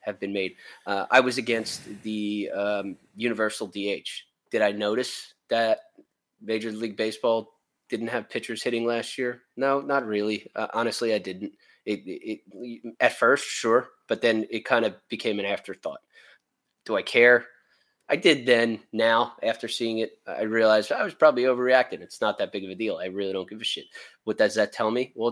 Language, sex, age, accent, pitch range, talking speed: English, male, 20-39, American, 105-120 Hz, 190 wpm